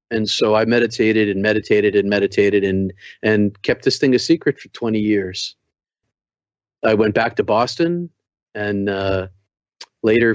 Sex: male